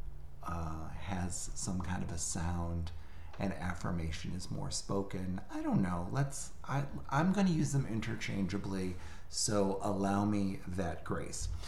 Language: English